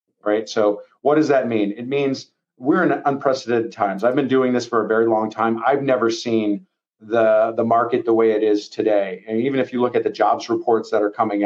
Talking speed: 230 wpm